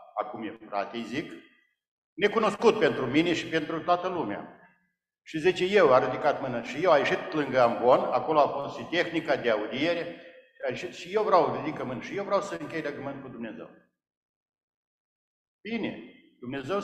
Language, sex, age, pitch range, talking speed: Romanian, male, 60-79, 140-195 Hz, 170 wpm